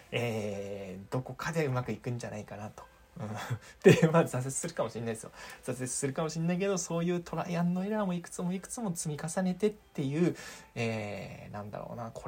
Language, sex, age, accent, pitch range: Japanese, male, 20-39, native, 105-150 Hz